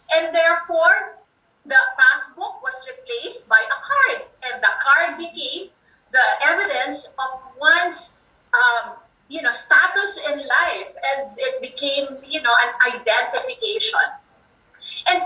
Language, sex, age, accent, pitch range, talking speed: English, female, 40-59, Filipino, 255-385 Hz, 120 wpm